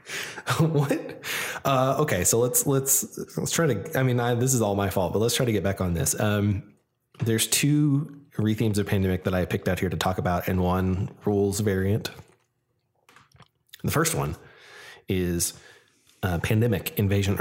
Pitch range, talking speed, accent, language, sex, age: 95-110 Hz, 170 wpm, American, English, male, 20-39